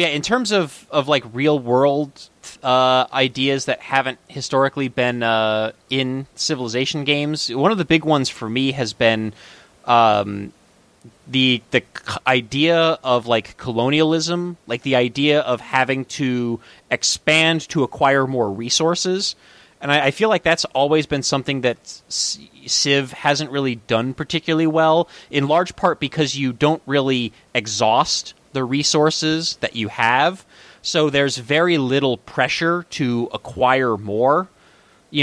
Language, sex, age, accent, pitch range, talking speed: English, male, 30-49, American, 125-155 Hz, 140 wpm